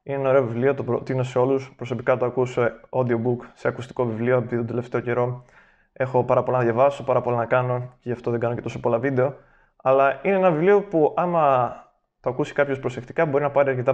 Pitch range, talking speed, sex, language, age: 120-140 Hz, 225 wpm, male, Greek, 20-39